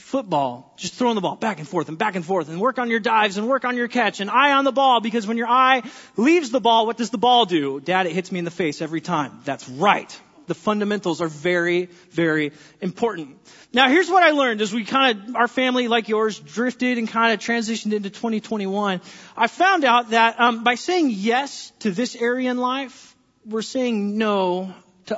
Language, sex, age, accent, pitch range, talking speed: English, male, 30-49, American, 195-265 Hz, 220 wpm